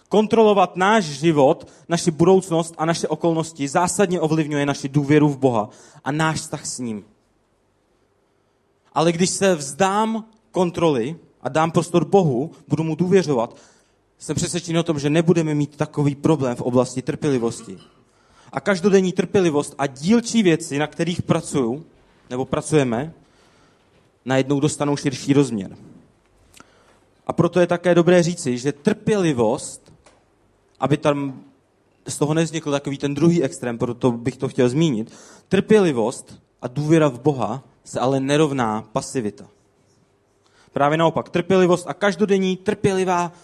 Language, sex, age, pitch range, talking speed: Czech, male, 30-49, 135-175 Hz, 130 wpm